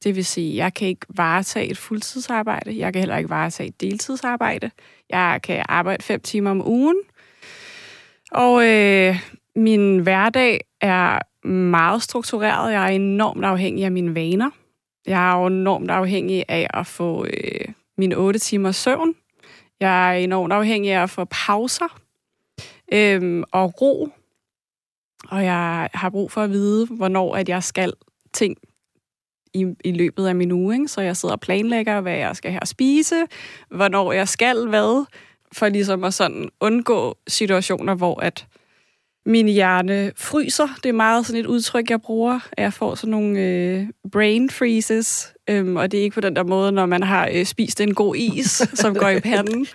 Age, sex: 30-49, female